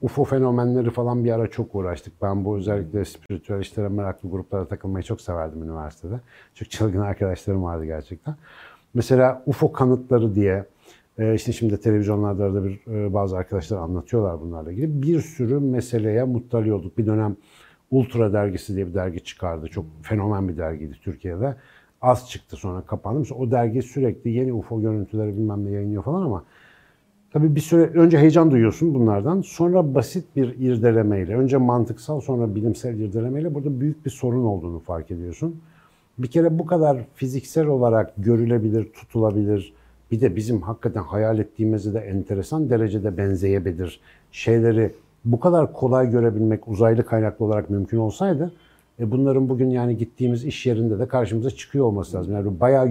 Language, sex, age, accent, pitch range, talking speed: Turkish, male, 60-79, native, 100-130 Hz, 155 wpm